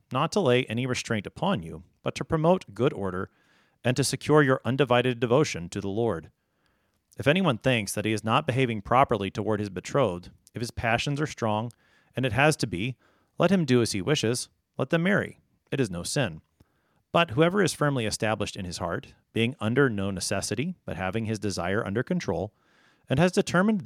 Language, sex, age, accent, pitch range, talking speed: English, male, 40-59, American, 100-145 Hz, 195 wpm